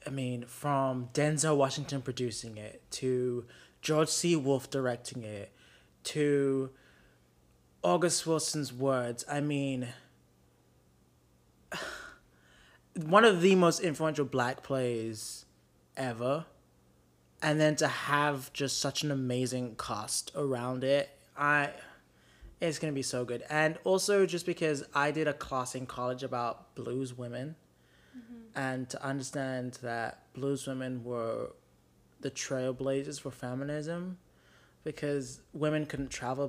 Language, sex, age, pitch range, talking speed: English, male, 20-39, 120-145 Hz, 120 wpm